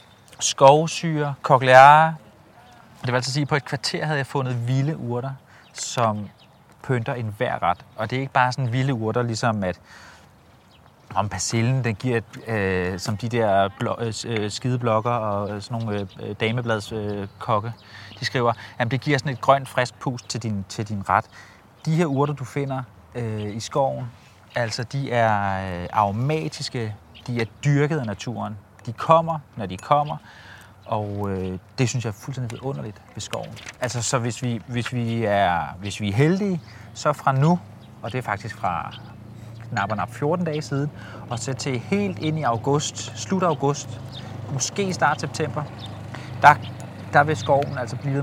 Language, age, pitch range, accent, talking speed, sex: Danish, 30-49, 110-135 Hz, native, 165 wpm, male